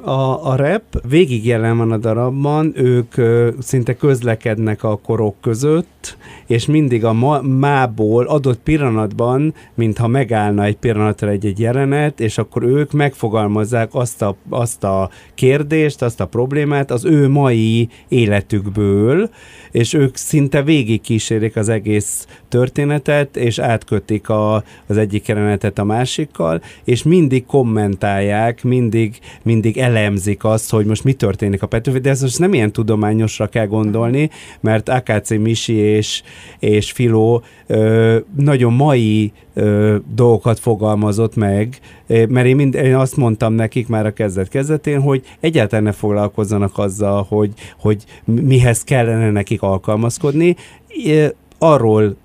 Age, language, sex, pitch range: 50-69, Hungarian, male, 105-130 Hz